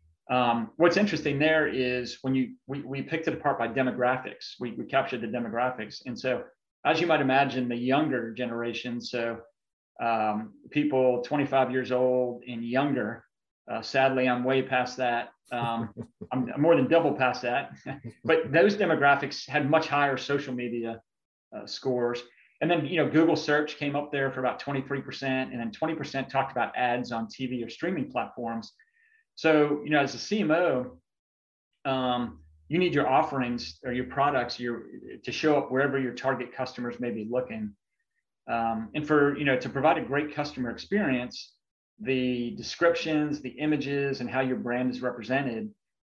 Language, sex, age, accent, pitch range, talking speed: English, male, 30-49, American, 120-145 Hz, 170 wpm